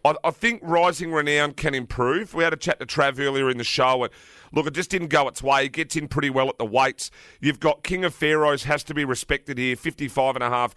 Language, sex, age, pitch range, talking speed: English, male, 40-59, 120-150 Hz, 235 wpm